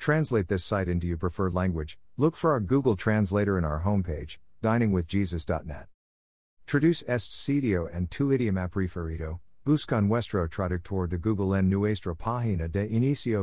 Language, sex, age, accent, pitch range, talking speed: English, male, 50-69, American, 85-115 Hz, 145 wpm